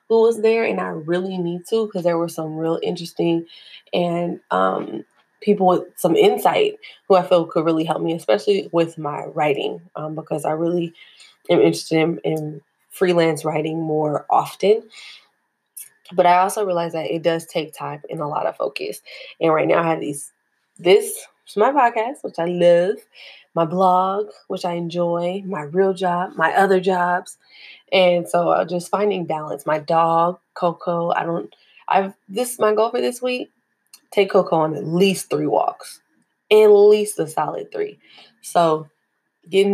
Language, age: English, 20-39